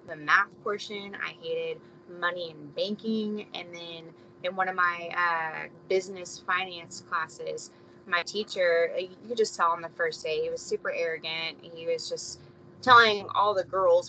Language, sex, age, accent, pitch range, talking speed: English, female, 20-39, American, 170-220 Hz, 165 wpm